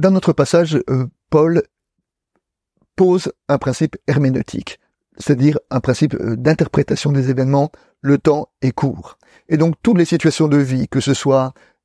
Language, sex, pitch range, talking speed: French, male, 130-160 Hz, 140 wpm